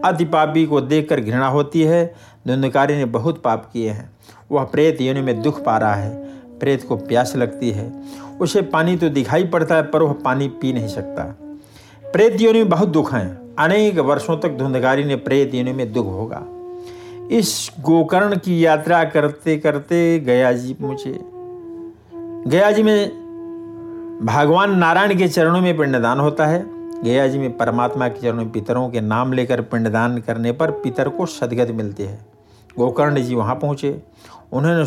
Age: 60-79